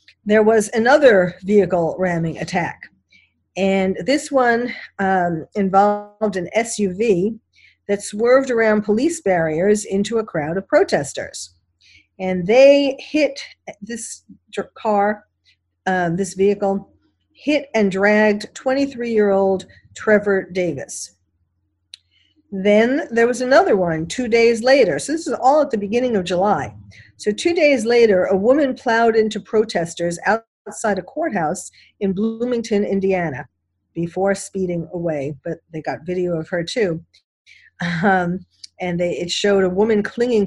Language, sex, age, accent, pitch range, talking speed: English, female, 50-69, American, 170-220 Hz, 130 wpm